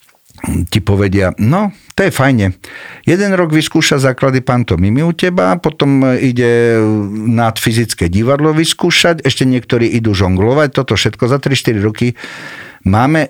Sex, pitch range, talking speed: male, 100-130 Hz, 130 wpm